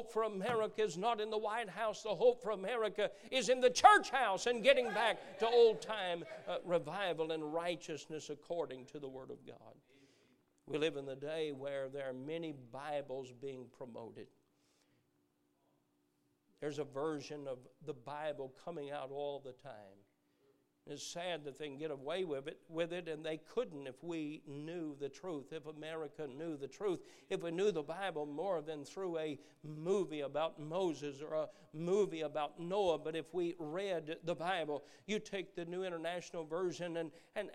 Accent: American